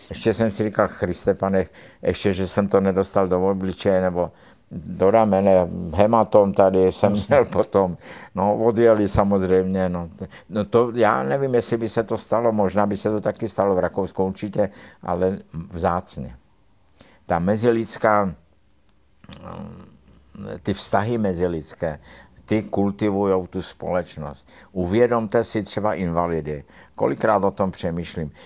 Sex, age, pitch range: male, 60-79, 90-105 Hz